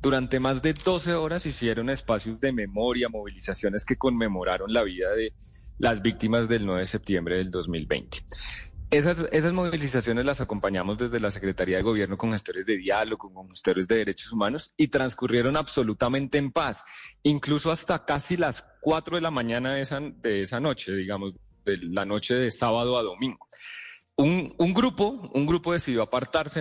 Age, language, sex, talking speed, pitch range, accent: 30-49, Spanish, male, 160 wpm, 105-150 Hz, Colombian